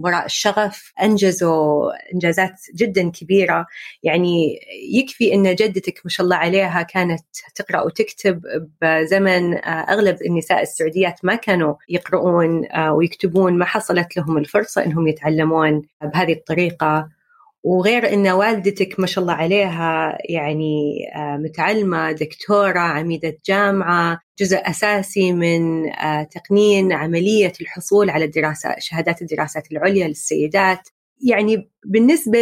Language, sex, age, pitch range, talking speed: Arabic, female, 30-49, 170-225 Hz, 105 wpm